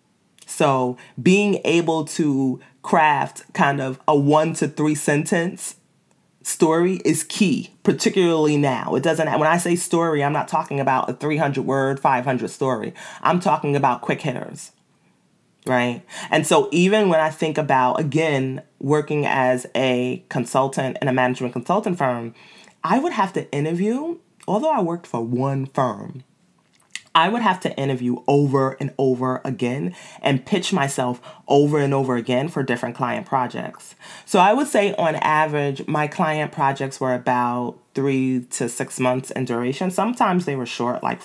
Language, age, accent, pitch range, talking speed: English, 30-49, American, 130-170 Hz, 155 wpm